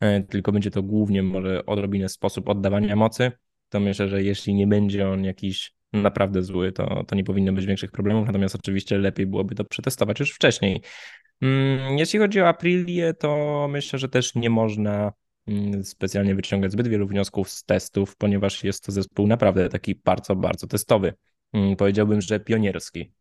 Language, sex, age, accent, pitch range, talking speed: Polish, male, 20-39, native, 100-115 Hz, 165 wpm